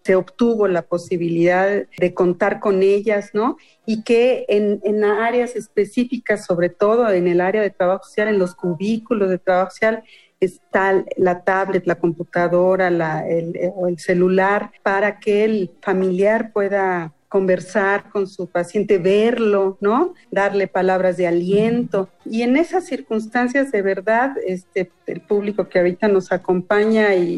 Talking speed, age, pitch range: 145 wpm, 40-59, 180-220 Hz